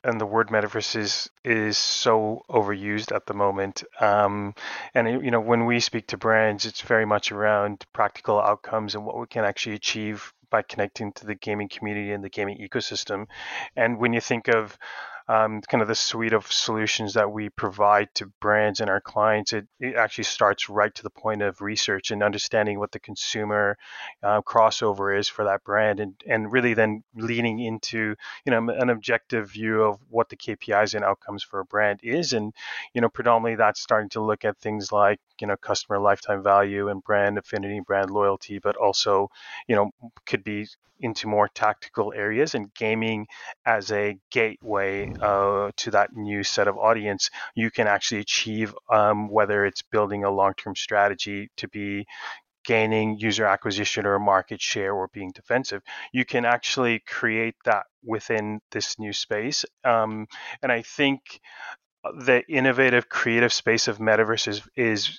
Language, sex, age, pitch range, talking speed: English, male, 20-39, 100-115 Hz, 175 wpm